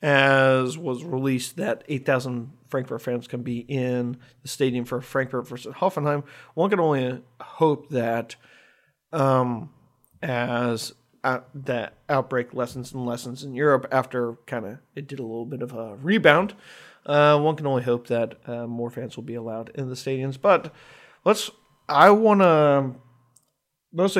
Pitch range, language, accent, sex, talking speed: 120-140 Hz, English, American, male, 155 wpm